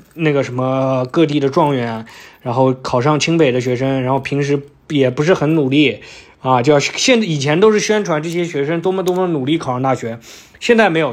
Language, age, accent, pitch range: Chinese, 20-39, native, 135-190 Hz